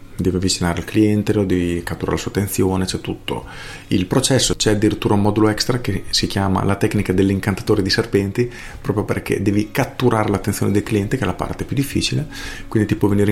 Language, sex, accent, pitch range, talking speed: Italian, male, native, 100-120 Hz, 200 wpm